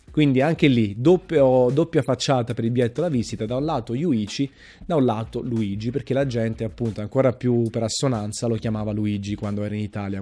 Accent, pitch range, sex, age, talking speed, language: native, 115-135 Hz, male, 30-49, 200 wpm, Italian